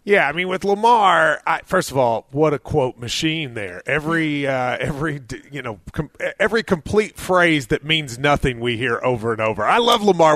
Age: 30-49